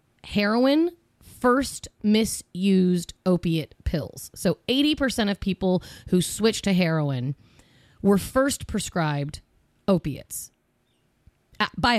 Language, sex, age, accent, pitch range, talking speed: English, female, 30-49, American, 170-210 Hz, 95 wpm